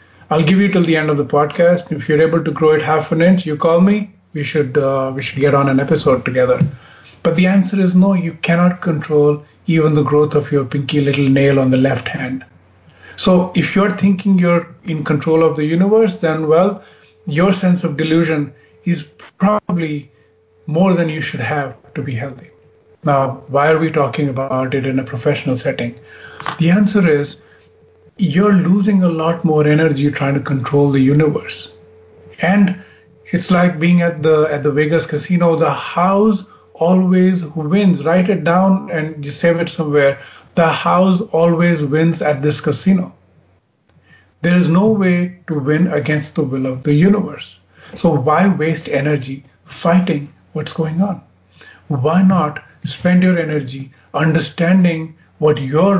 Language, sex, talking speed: English, male, 170 wpm